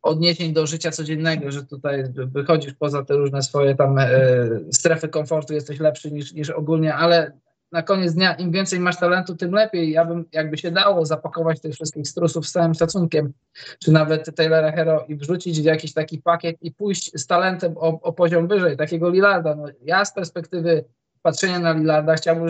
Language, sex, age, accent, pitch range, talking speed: Polish, male, 20-39, native, 155-180 Hz, 185 wpm